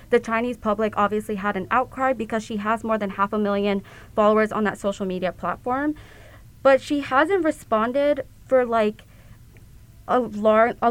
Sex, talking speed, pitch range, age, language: female, 160 wpm, 205-240 Hz, 20-39, English